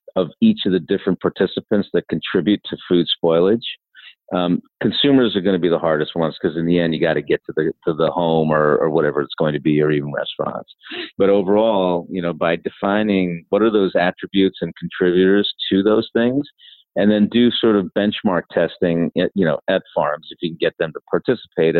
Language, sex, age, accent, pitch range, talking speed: English, male, 40-59, American, 85-100 Hz, 210 wpm